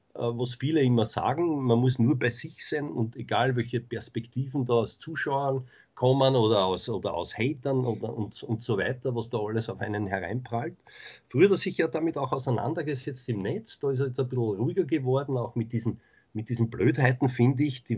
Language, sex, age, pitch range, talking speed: German, male, 50-69, 110-135 Hz, 195 wpm